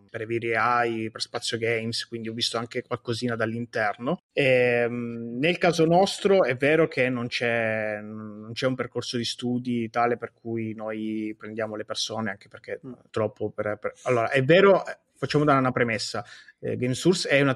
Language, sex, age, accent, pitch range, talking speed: English, male, 20-39, Italian, 110-130 Hz, 175 wpm